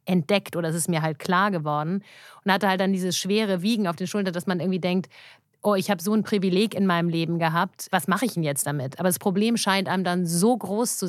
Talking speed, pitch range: 255 wpm, 160-190 Hz